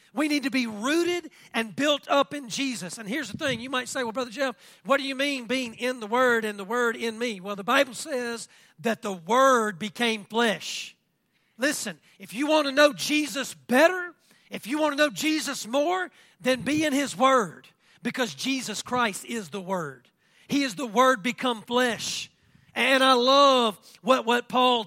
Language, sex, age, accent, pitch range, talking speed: English, male, 40-59, American, 215-270 Hz, 195 wpm